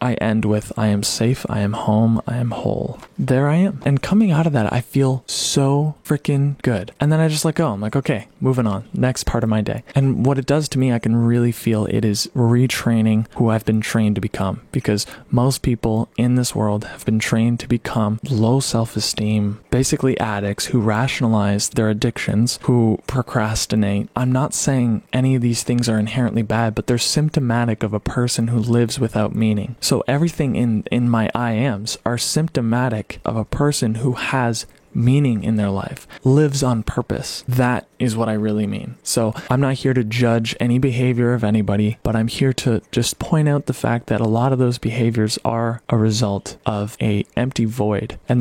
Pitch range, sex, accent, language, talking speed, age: 110-130 Hz, male, American, English, 200 wpm, 20-39